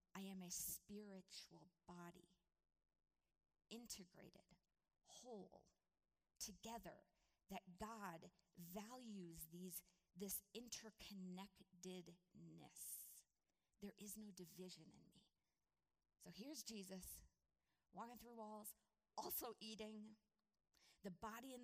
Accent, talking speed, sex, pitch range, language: American, 85 wpm, female, 175-215 Hz, English